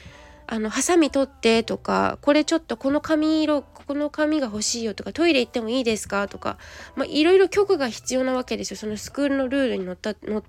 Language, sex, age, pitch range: Japanese, female, 20-39, 220-315 Hz